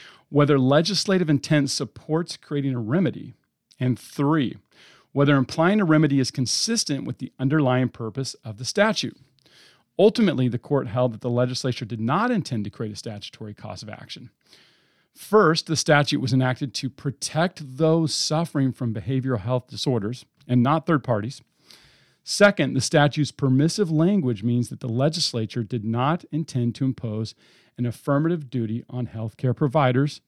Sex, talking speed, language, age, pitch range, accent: male, 150 wpm, English, 40-59, 120-155 Hz, American